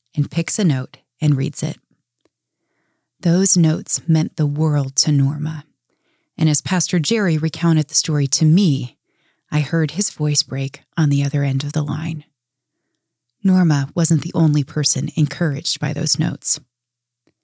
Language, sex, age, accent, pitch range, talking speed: English, female, 30-49, American, 150-185 Hz, 150 wpm